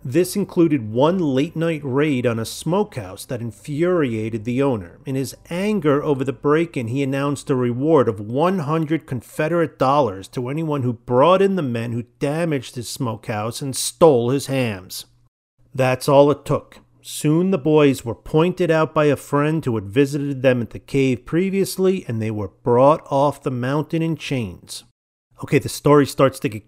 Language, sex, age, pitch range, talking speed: English, male, 40-59, 120-155 Hz, 175 wpm